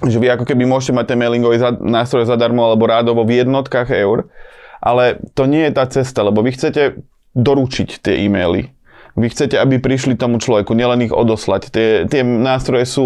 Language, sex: Slovak, male